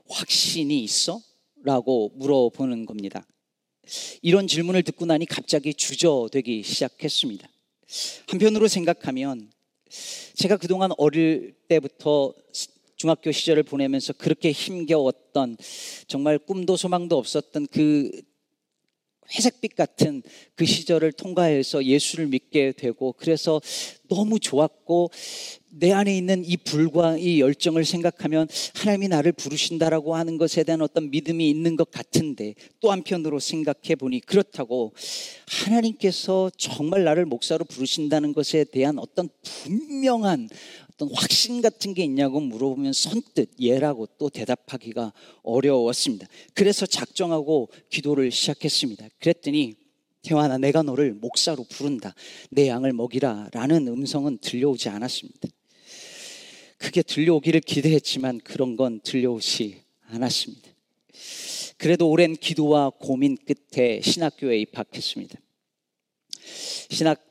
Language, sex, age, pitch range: Korean, male, 40-59, 135-175 Hz